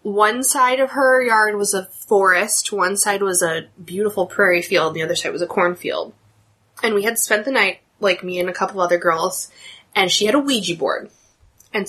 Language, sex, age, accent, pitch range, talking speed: English, female, 20-39, American, 175-220 Hz, 205 wpm